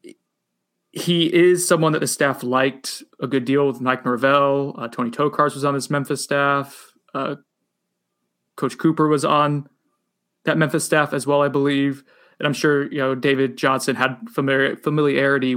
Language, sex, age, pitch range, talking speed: English, male, 20-39, 125-145 Hz, 165 wpm